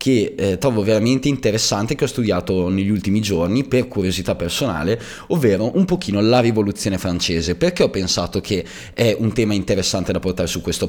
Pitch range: 90-120 Hz